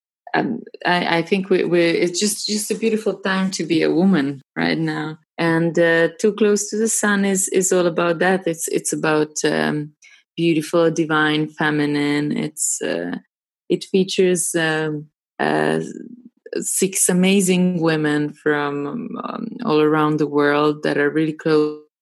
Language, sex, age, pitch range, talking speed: English, female, 20-39, 150-180 Hz, 150 wpm